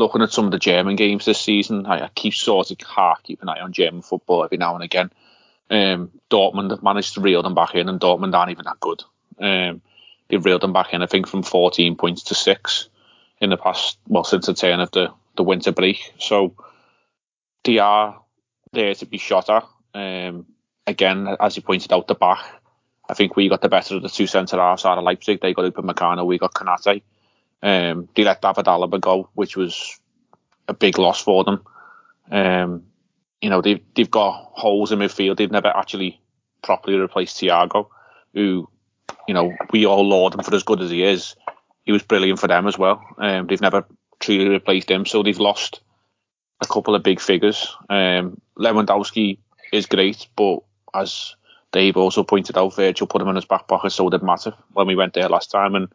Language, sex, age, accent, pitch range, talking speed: English, male, 30-49, British, 90-100 Hz, 200 wpm